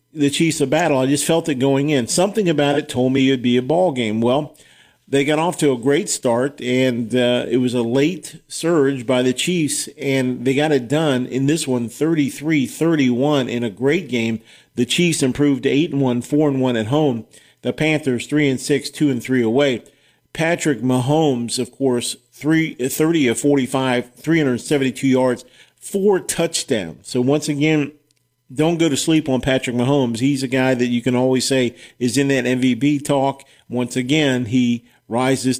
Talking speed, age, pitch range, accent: 190 wpm, 40-59, 125-145 Hz, American